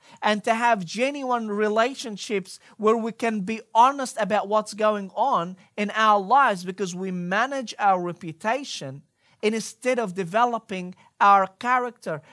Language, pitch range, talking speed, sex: English, 195-240 Hz, 130 wpm, male